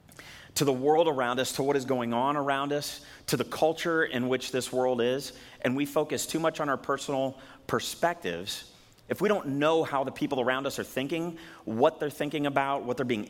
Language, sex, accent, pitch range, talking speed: English, male, American, 110-150 Hz, 210 wpm